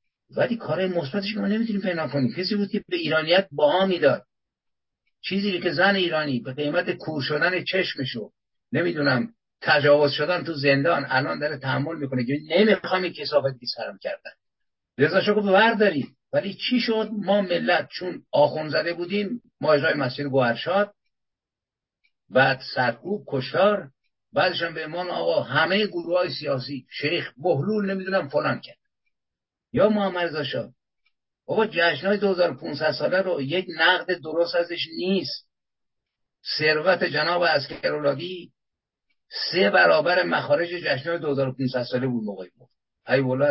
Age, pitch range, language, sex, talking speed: 50-69, 140-190 Hz, Persian, male, 130 wpm